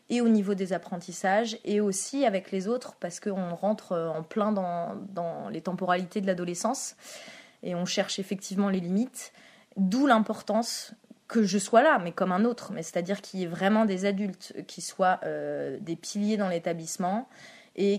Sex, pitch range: female, 185-220 Hz